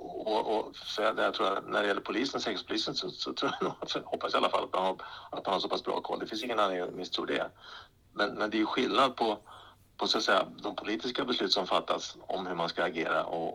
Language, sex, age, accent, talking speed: Swedish, male, 60-79, Norwegian, 260 wpm